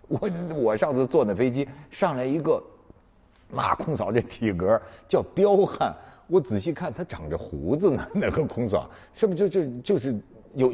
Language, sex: Chinese, male